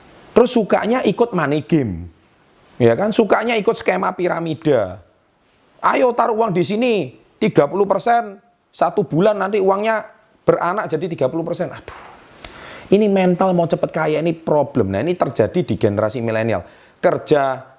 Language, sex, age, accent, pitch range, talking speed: Indonesian, male, 30-49, native, 125-180 Hz, 130 wpm